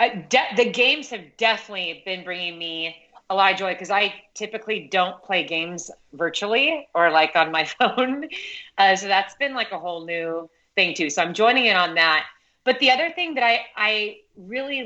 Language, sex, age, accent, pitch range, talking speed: English, female, 30-49, American, 170-220 Hz, 195 wpm